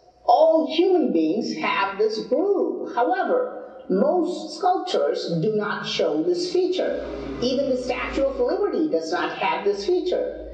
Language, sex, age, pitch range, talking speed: Hindi, female, 50-69, 245-355 Hz, 135 wpm